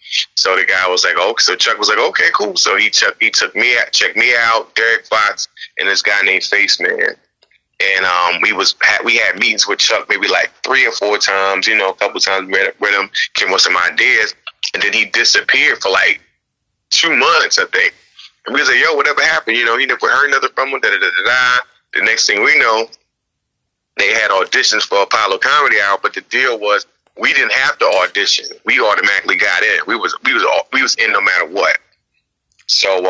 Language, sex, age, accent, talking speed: English, male, 30-49, American, 220 wpm